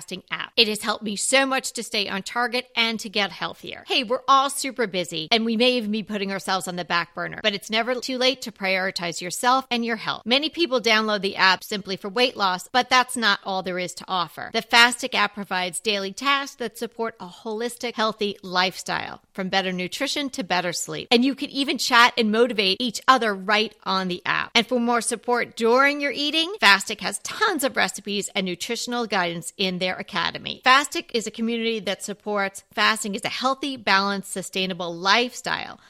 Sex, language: female, English